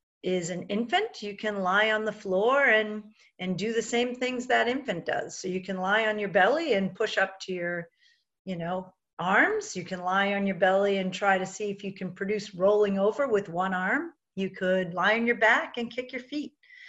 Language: English